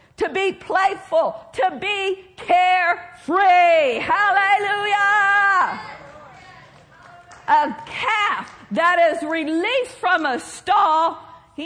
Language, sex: English, female